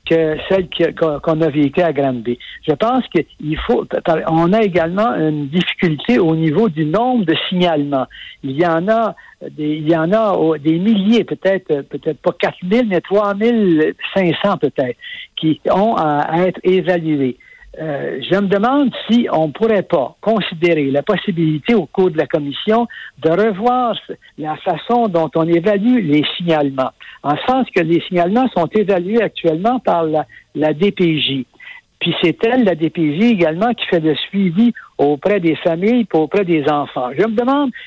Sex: male